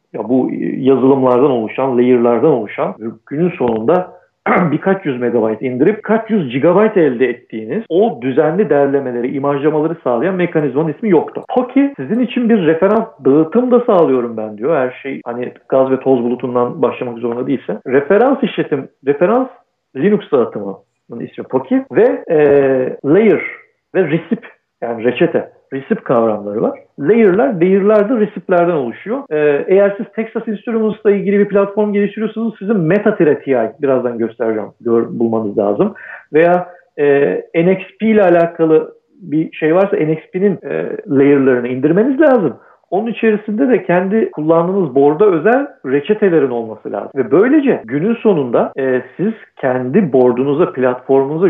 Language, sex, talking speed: Turkish, male, 135 wpm